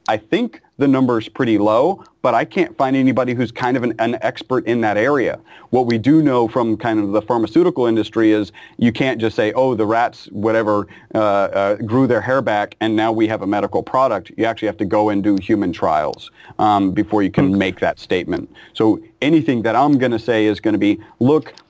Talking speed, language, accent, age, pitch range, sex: 225 wpm, English, American, 40-59, 105-125 Hz, male